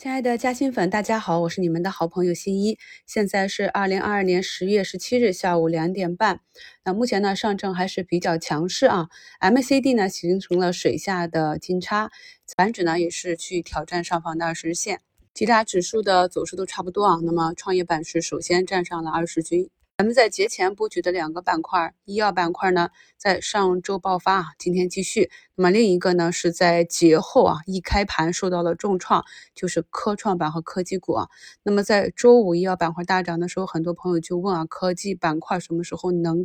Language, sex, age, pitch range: Chinese, female, 20-39, 170-205 Hz